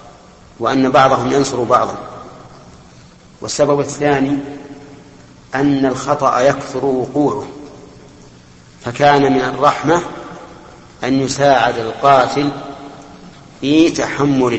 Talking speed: 75 wpm